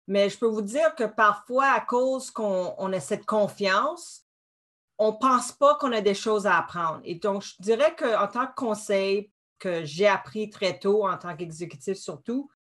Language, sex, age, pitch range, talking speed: French, female, 40-59, 195-240 Hz, 195 wpm